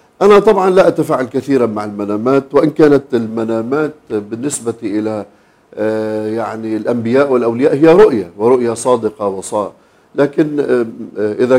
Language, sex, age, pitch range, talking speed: Arabic, male, 50-69, 115-145 Hz, 115 wpm